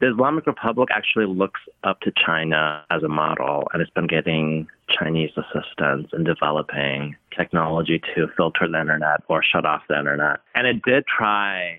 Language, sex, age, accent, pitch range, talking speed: English, male, 30-49, American, 80-95 Hz, 170 wpm